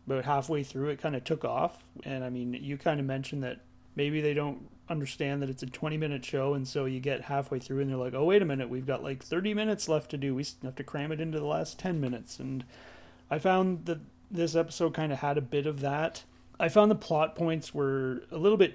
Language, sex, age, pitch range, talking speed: English, male, 30-49, 130-155 Hz, 250 wpm